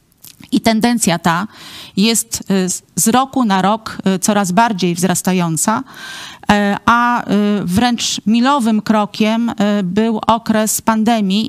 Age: 40-59